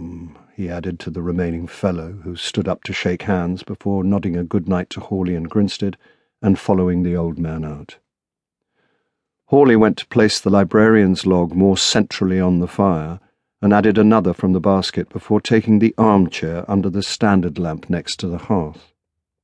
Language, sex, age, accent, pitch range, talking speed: English, male, 50-69, British, 85-105 Hz, 175 wpm